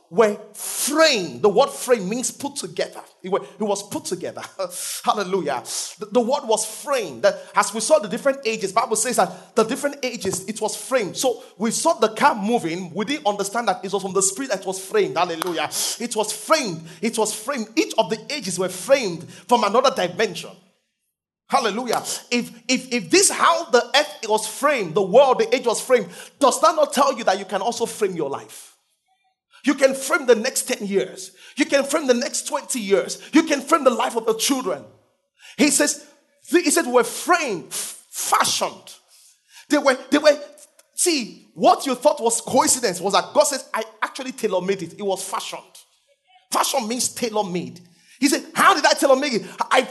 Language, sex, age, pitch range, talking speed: English, male, 30-49, 200-285 Hz, 195 wpm